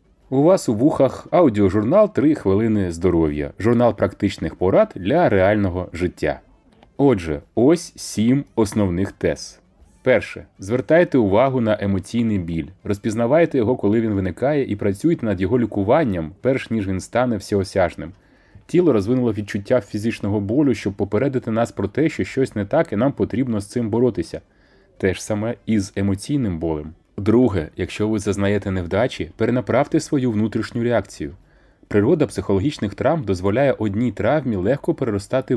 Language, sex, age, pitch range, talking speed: Ukrainian, male, 30-49, 100-125 Hz, 140 wpm